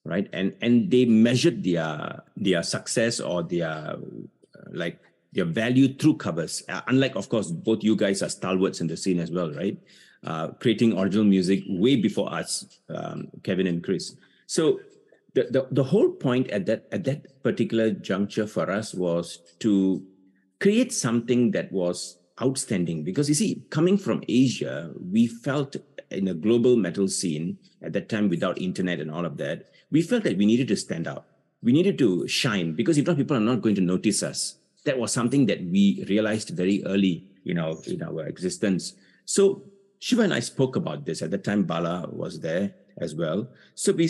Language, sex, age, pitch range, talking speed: English, male, 50-69, 95-140 Hz, 185 wpm